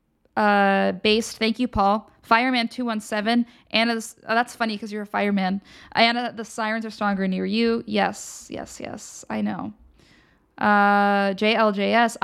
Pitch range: 200-245 Hz